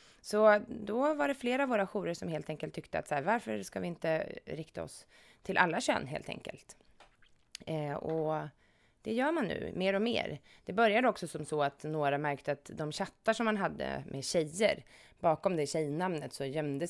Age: 20-39